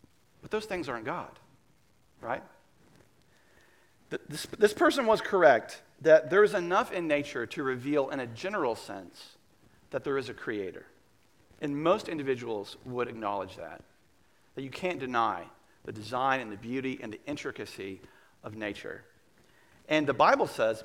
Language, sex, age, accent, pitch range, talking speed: English, male, 40-59, American, 120-165 Hz, 145 wpm